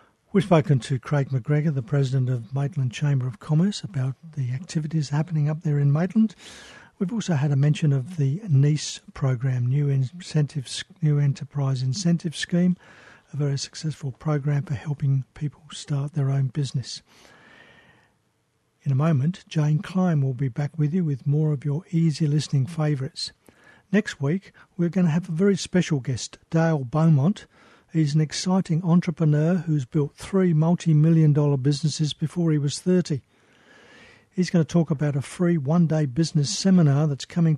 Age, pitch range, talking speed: 60-79, 140-170 Hz, 160 wpm